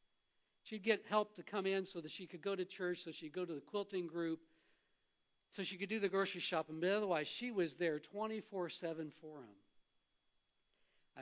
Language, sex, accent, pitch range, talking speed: English, male, American, 155-195 Hz, 195 wpm